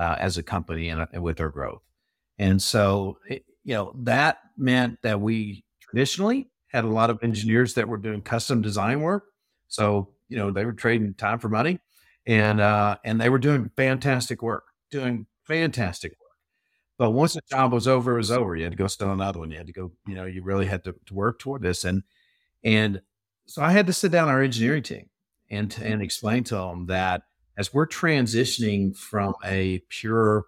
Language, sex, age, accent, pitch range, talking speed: English, male, 50-69, American, 95-120 Hz, 205 wpm